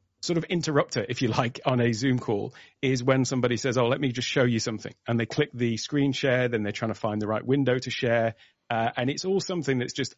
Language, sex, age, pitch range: English, male, 40-59, 115-130 Hz